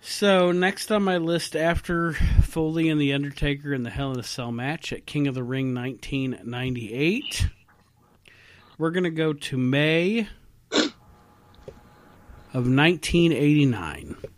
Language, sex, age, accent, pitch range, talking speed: English, male, 40-59, American, 120-155 Hz, 130 wpm